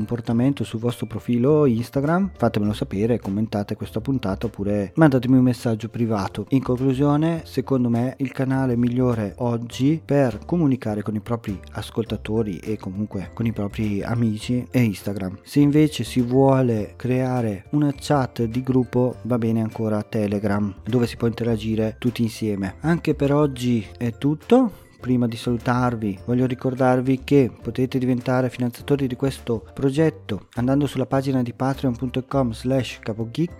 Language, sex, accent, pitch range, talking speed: Italian, male, native, 115-140 Hz, 140 wpm